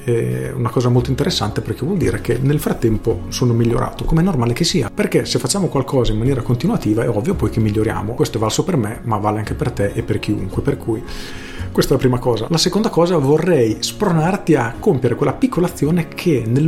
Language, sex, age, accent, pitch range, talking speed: Italian, male, 40-59, native, 115-150 Hz, 225 wpm